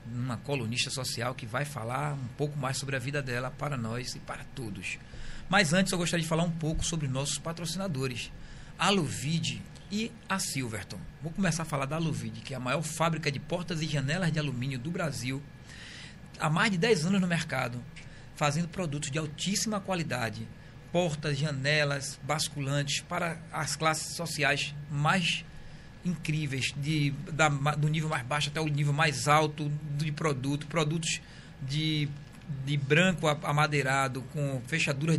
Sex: male